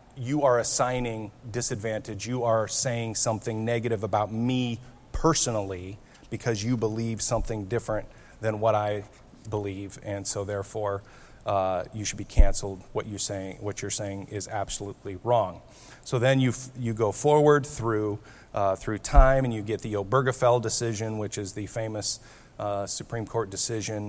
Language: English